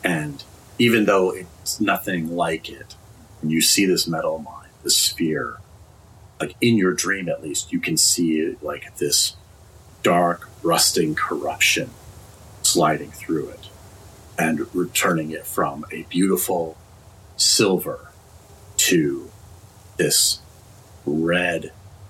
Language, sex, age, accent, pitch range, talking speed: English, male, 40-59, American, 85-100 Hz, 115 wpm